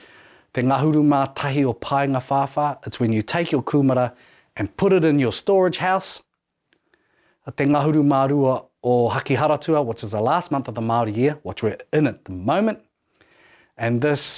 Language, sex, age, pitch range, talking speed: English, male, 30-49, 105-130 Hz, 165 wpm